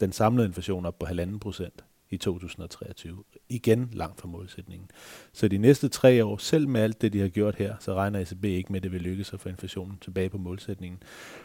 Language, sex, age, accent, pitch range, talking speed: Danish, male, 30-49, native, 95-110 Hz, 215 wpm